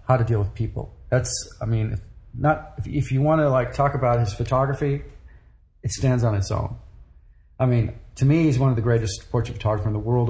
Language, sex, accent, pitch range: English, male, American, 110-130 Hz